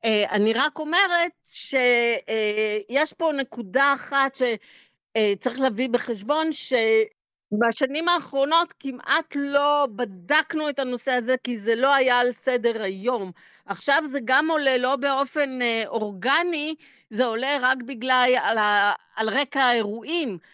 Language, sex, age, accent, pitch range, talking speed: Hebrew, female, 50-69, native, 230-295 Hz, 115 wpm